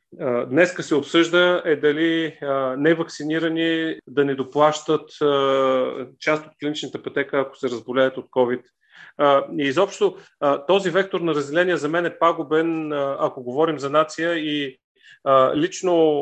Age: 30-49